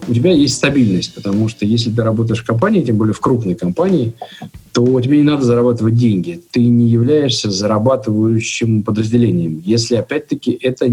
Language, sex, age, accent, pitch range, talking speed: Russian, male, 50-69, native, 100-120 Hz, 165 wpm